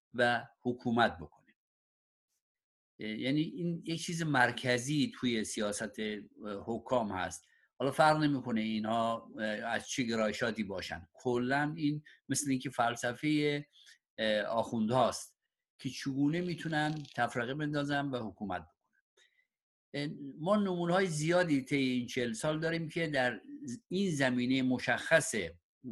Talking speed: 115 wpm